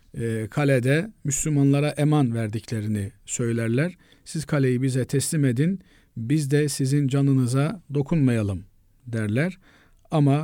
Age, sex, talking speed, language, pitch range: 50-69, male, 100 wpm, Turkish, 130-155 Hz